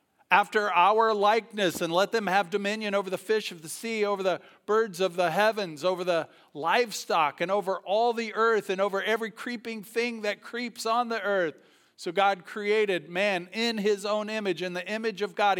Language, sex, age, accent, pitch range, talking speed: English, male, 50-69, American, 135-205 Hz, 195 wpm